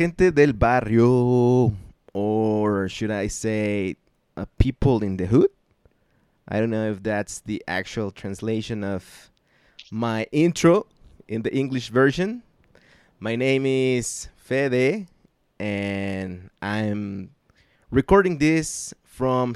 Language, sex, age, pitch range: Spanish, male, 20-39, 105-135 Hz